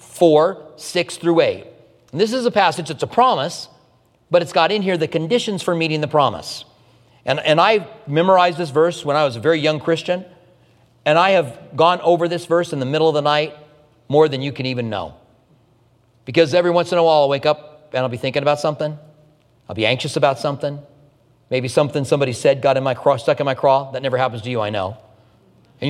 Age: 40-59